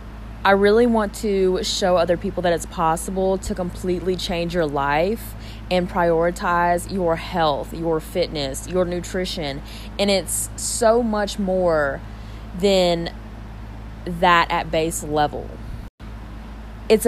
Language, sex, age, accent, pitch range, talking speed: English, female, 20-39, American, 145-195 Hz, 120 wpm